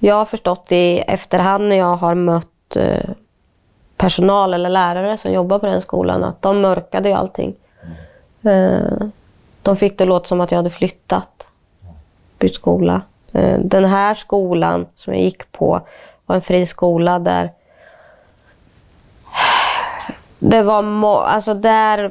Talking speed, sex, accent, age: 135 wpm, female, Swedish, 20-39